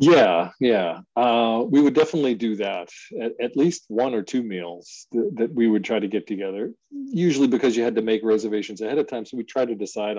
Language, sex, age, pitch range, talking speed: English, male, 40-59, 100-125 Hz, 225 wpm